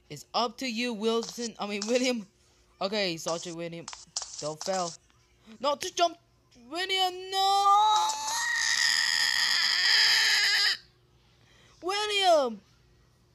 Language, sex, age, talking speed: English, female, 20-39, 85 wpm